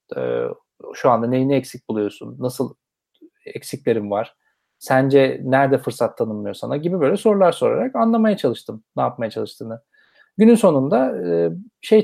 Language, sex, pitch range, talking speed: Turkish, male, 135-200 Hz, 125 wpm